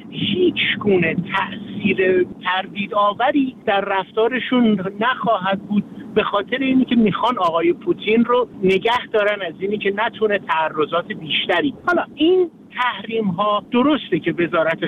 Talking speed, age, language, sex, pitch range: 125 wpm, 50-69, Persian, male, 180-245 Hz